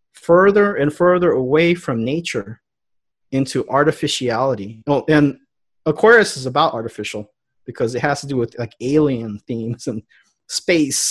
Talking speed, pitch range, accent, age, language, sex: 135 wpm, 130-175 Hz, American, 30-49, English, male